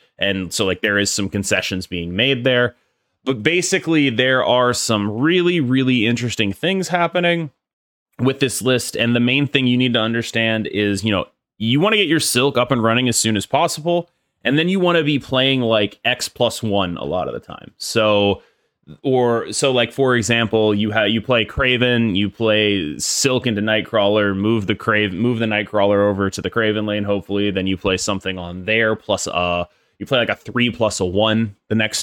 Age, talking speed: 20-39, 205 wpm